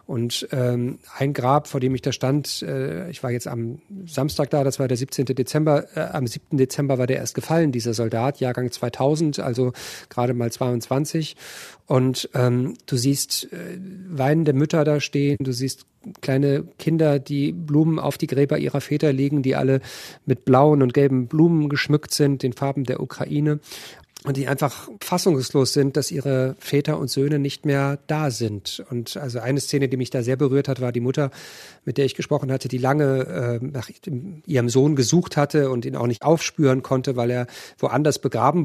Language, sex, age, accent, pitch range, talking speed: German, male, 40-59, German, 130-150 Hz, 185 wpm